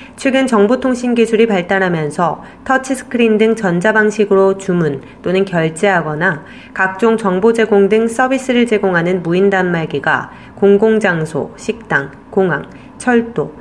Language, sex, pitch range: Korean, female, 175-220 Hz